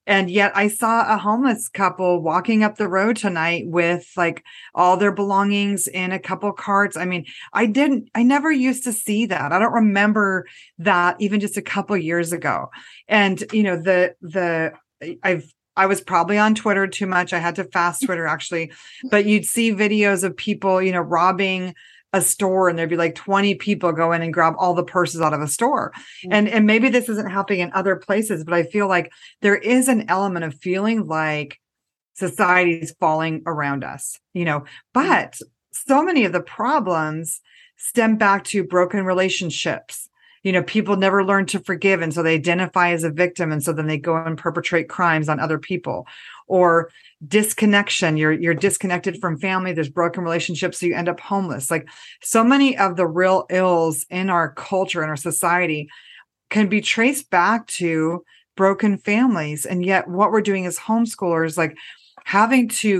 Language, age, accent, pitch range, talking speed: English, 40-59, American, 170-205 Hz, 185 wpm